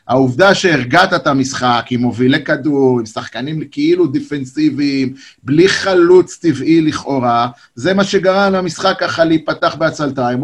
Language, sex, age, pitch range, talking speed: Hebrew, male, 30-49, 130-165 Hz, 125 wpm